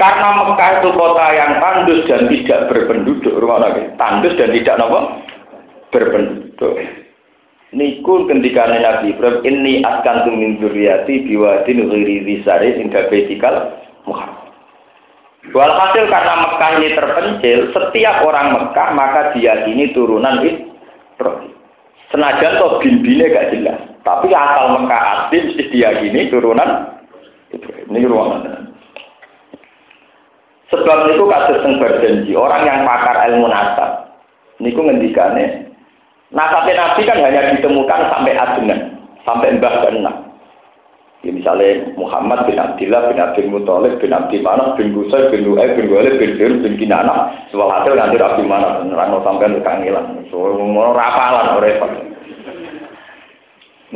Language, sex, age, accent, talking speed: Indonesian, male, 50-69, native, 125 wpm